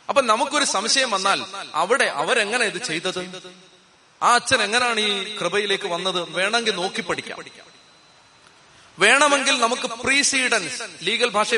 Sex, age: male, 30-49